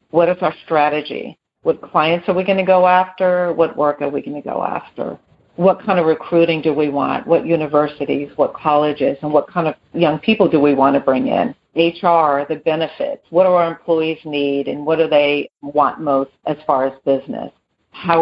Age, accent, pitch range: 50-69, American, 145-170 Hz